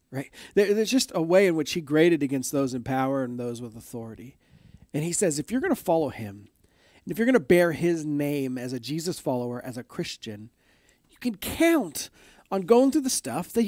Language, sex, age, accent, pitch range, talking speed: English, male, 40-59, American, 120-175 Hz, 220 wpm